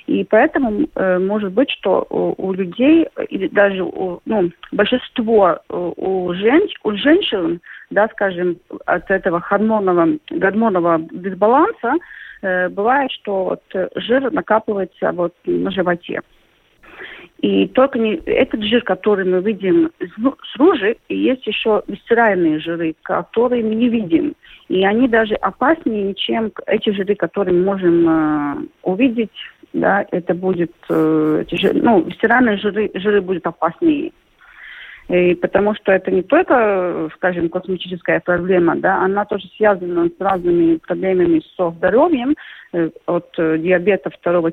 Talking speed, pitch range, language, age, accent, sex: 130 wpm, 180-255 Hz, Russian, 40-59, native, female